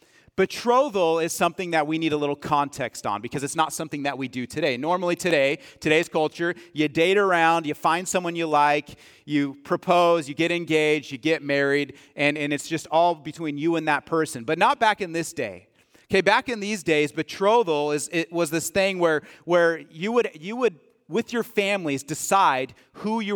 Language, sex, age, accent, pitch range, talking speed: English, male, 30-49, American, 150-190 Hz, 200 wpm